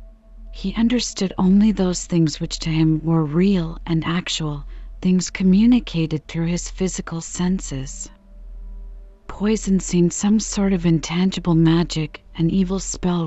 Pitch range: 160-185 Hz